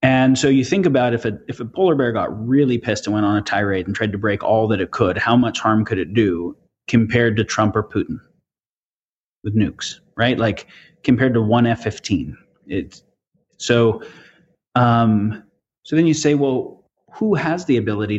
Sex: male